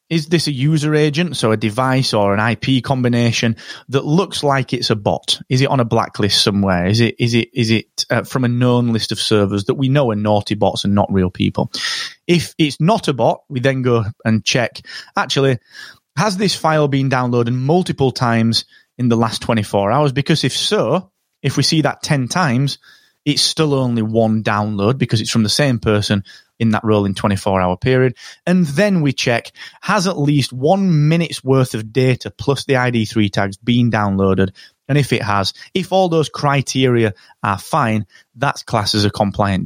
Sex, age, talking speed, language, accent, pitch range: male, 30-49, 195 wpm, English, British, 110-150 Hz